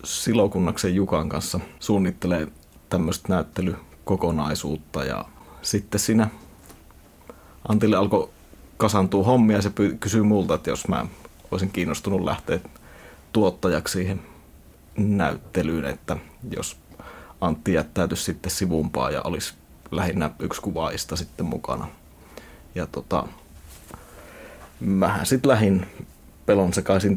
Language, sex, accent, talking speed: Finnish, male, native, 100 wpm